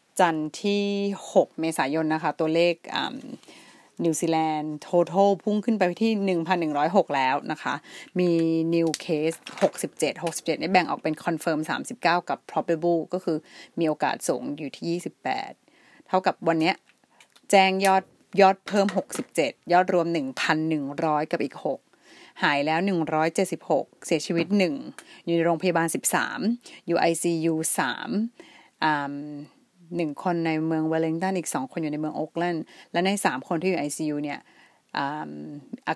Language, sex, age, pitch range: Thai, female, 30-49, 155-190 Hz